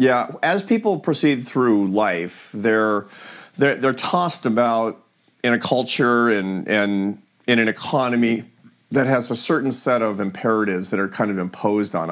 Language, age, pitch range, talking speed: English, 40-59, 105-125 Hz, 165 wpm